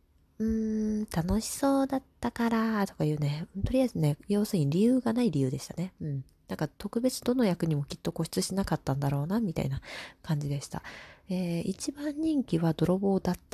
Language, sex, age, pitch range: Japanese, female, 20-39, 145-220 Hz